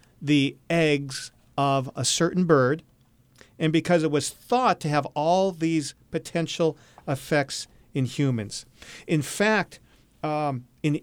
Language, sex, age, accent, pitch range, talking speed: English, male, 40-59, American, 135-175 Hz, 125 wpm